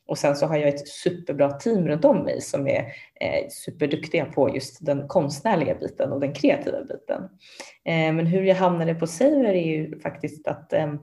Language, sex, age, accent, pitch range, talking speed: Swedish, female, 20-39, native, 145-185 Hz, 180 wpm